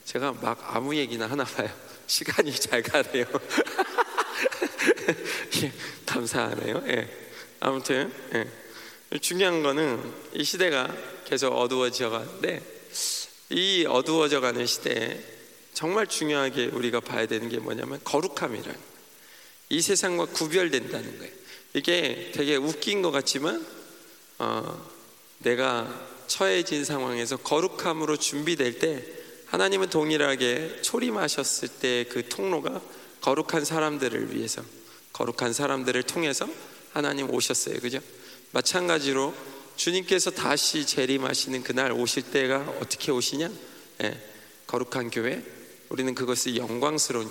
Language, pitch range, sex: Korean, 125-165 Hz, male